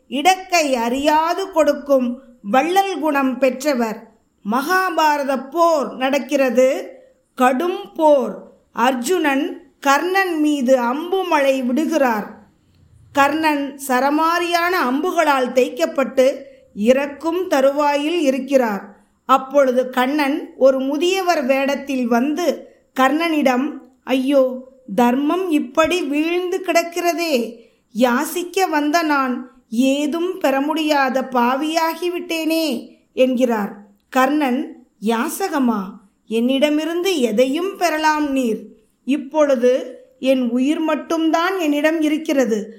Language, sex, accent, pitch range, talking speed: Tamil, female, native, 255-315 Hz, 75 wpm